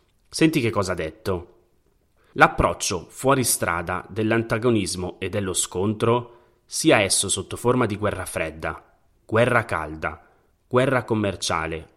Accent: native